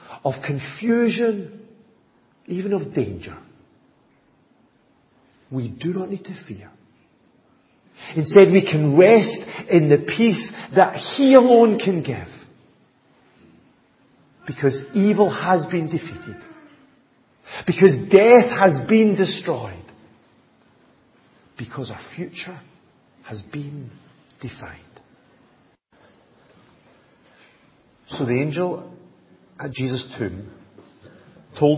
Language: English